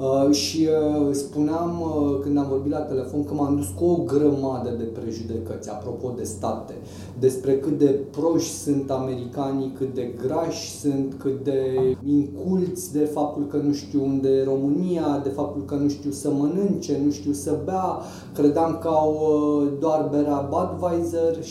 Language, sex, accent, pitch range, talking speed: Romanian, male, native, 130-155 Hz, 165 wpm